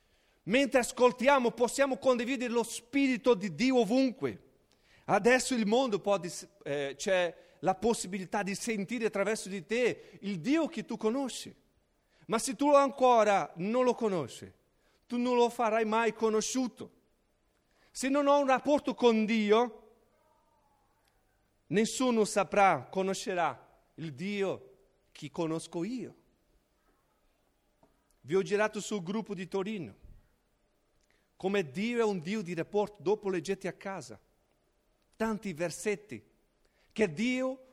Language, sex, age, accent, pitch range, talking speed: Italian, male, 40-59, native, 200-265 Hz, 120 wpm